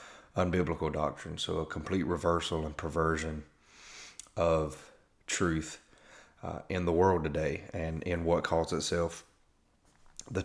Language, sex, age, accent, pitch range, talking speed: English, male, 30-49, American, 80-90 Hz, 120 wpm